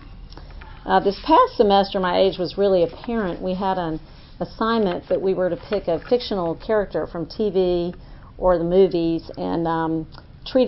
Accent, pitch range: American, 170-205 Hz